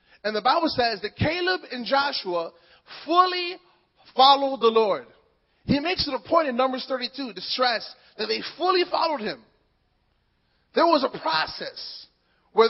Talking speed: 150 wpm